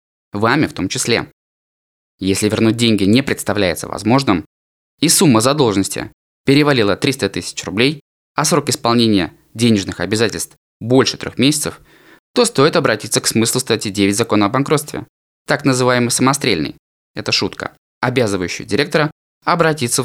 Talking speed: 130 wpm